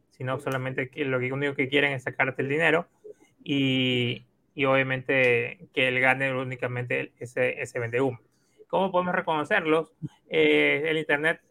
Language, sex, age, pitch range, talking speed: Spanish, male, 30-49, 130-155 Hz, 140 wpm